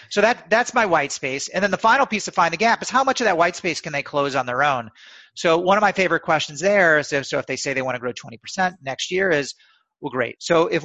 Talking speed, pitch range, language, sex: 295 wpm, 130-180 Hz, French, male